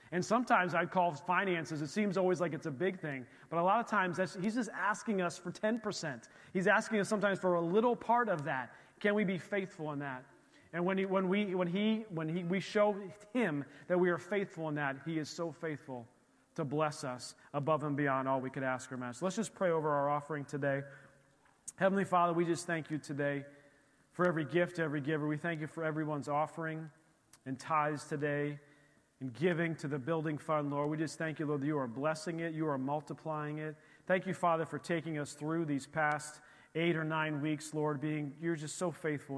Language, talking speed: English, 220 wpm